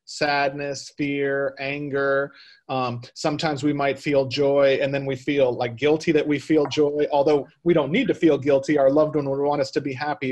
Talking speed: 205 wpm